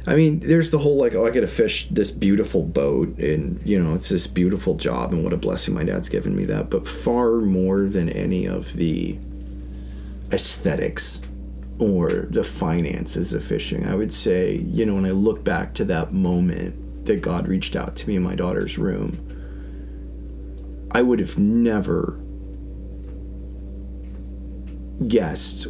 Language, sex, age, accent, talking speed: English, male, 20-39, American, 165 wpm